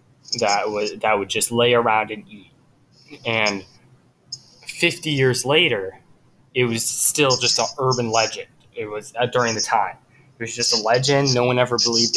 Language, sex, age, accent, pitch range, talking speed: English, male, 10-29, American, 115-135 Hz, 175 wpm